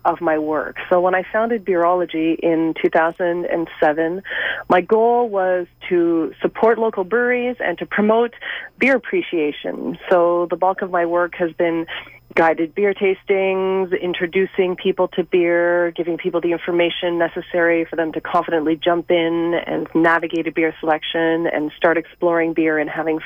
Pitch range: 165-190 Hz